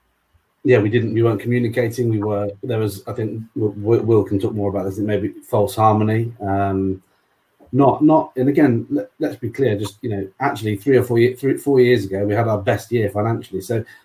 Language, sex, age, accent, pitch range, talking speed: English, male, 30-49, British, 100-115 Hz, 205 wpm